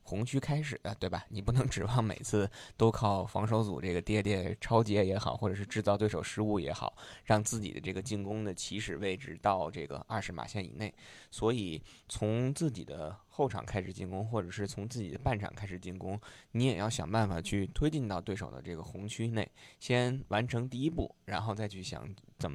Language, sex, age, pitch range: Chinese, male, 20-39, 95-120 Hz